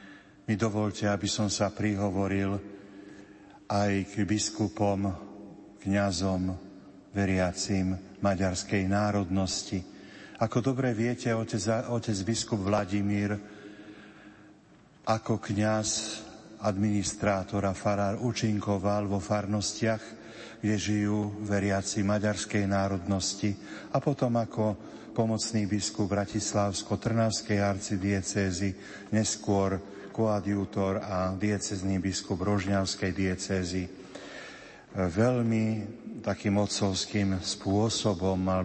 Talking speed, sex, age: 80 wpm, male, 50-69